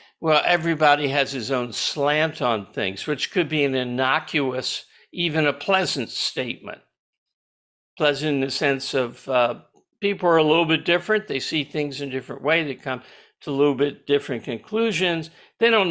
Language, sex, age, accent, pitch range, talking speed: English, male, 60-79, American, 130-165 Hz, 175 wpm